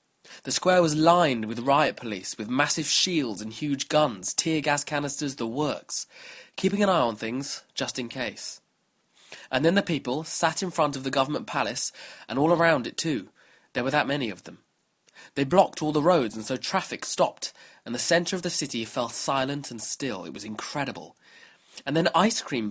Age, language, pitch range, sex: 20-39, English, 125-165 Hz, male